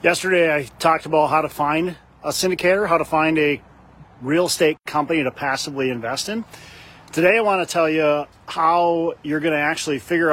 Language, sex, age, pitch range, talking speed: English, male, 40-59, 150-195 Hz, 185 wpm